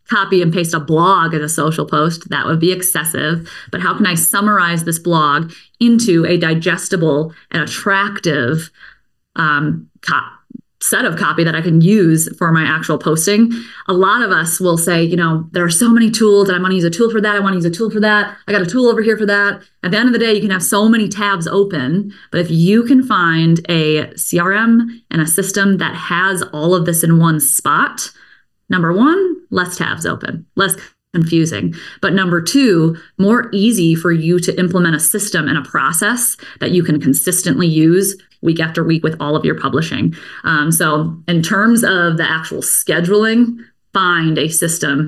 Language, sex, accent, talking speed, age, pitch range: English, female, American, 200 wpm, 20-39, 165-200 Hz